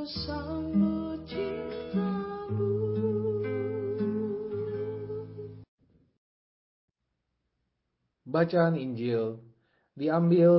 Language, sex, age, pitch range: Indonesian, male, 50-69, 130-180 Hz